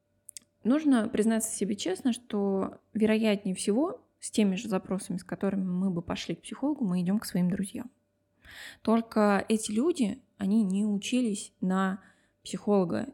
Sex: female